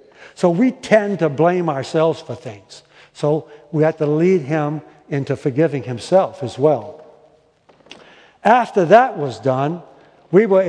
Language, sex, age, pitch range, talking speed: English, male, 60-79, 140-180 Hz, 140 wpm